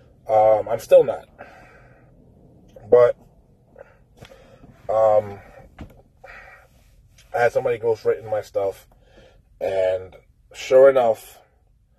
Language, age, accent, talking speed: English, 20-39, American, 75 wpm